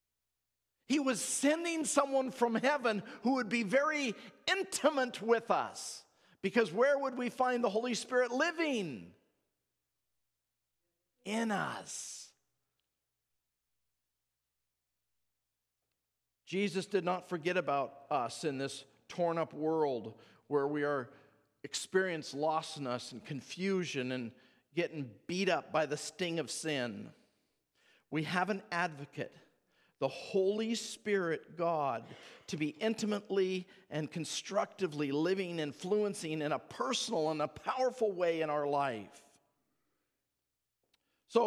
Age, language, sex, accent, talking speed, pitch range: 50-69, English, male, American, 115 wpm, 145-220 Hz